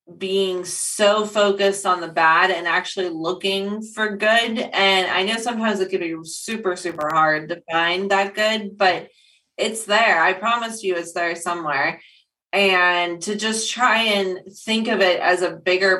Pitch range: 170-200 Hz